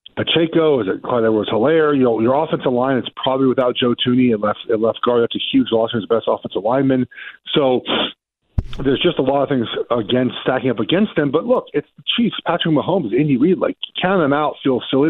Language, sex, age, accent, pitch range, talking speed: English, male, 40-59, American, 115-155 Hz, 225 wpm